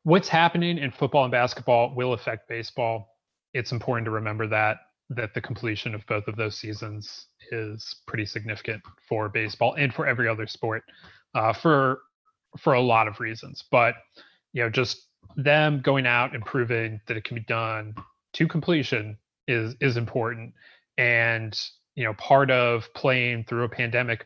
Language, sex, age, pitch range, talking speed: English, male, 30-49, 115-145 Hz, 165 wpm